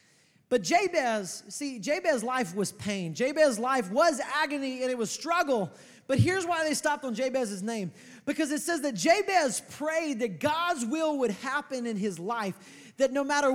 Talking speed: 175 wpm